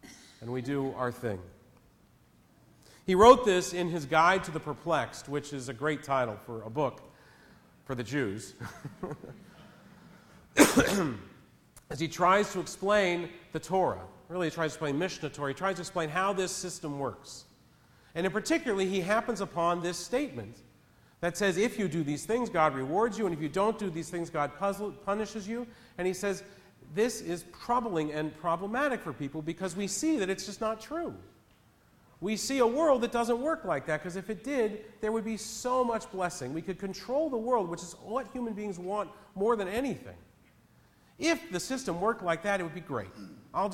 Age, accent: 40-59, American